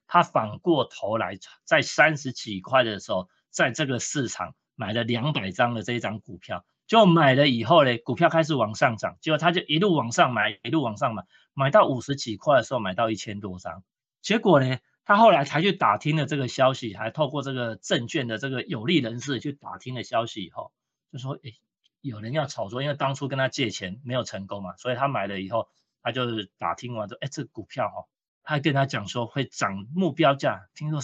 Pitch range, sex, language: 115-155 Hz, male, Chinese